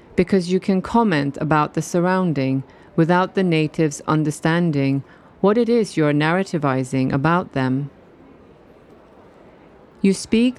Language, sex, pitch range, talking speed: Danish, female, 145-190 Hz, 115 wpm